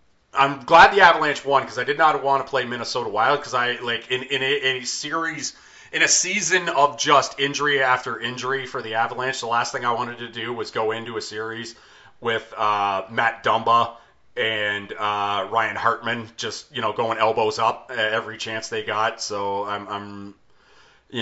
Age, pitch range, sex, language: 30-49, 110-135 Hz, male, English